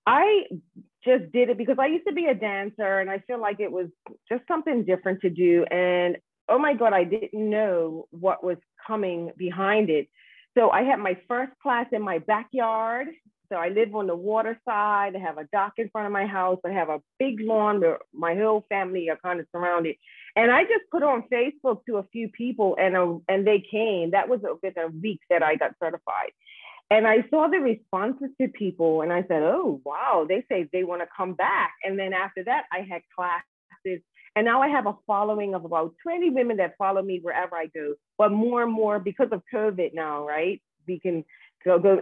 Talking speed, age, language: 215 wpm, 40-59, English